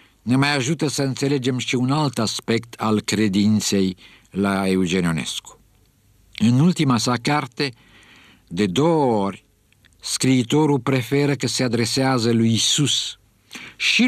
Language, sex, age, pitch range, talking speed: Romanian, male, 50-69, 100-130 Hz, 120 wpm